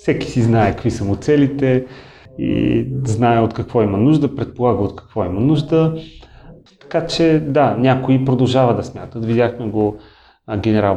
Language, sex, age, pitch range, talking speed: Bulgarian, male, 30-49, 115-140 Hz, 155 wpm